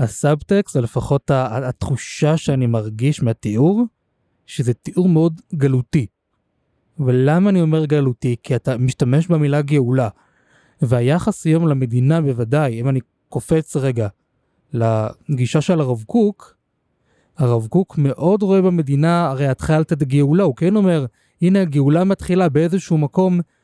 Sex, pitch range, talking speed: male, 135-175 Hz, 125 wpm